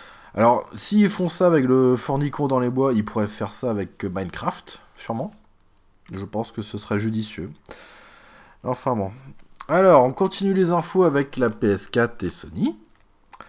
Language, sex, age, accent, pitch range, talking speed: French, male, 20-39, French, 95-140 Hz, 155 wpm